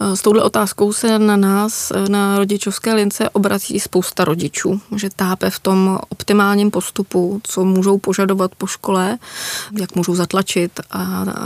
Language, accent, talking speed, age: Czech, native, 140 wpm, 20-39